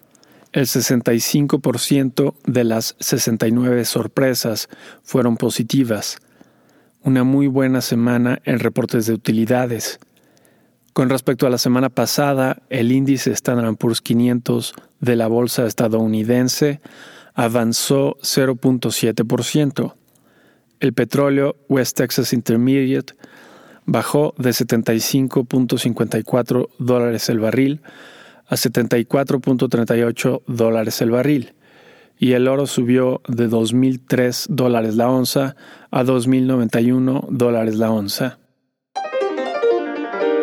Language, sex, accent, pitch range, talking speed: Spanish, male, Mexican, 120-135 Hz, 95 wpm